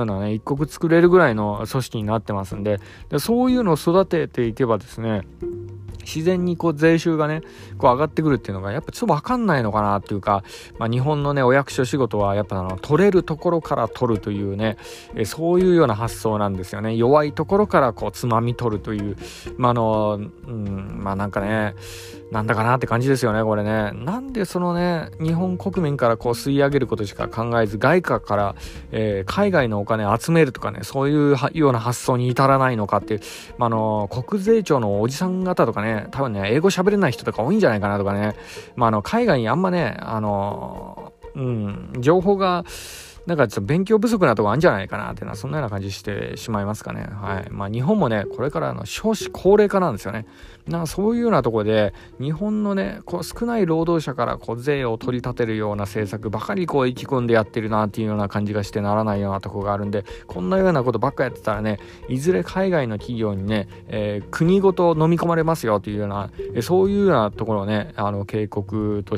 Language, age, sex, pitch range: Japanese, 20-39, male, 105-160 Hz